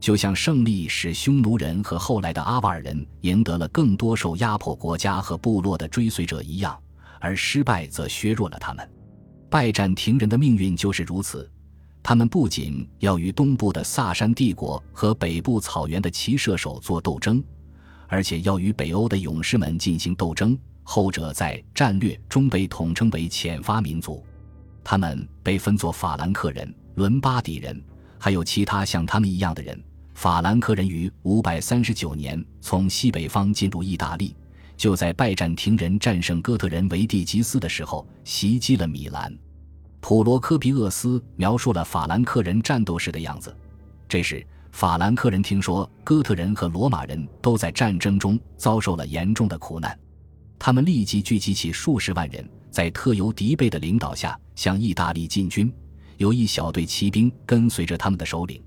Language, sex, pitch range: Chinese, male, 80-110 Hz